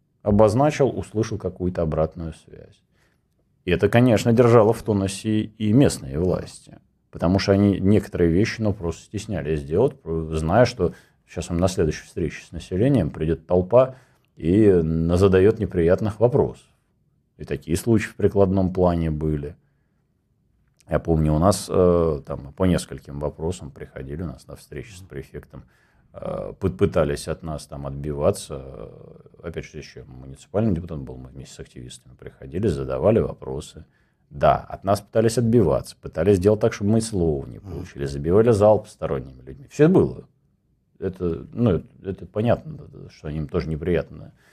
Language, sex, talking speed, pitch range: Russian, male, 140 wpm, 80-105 Hz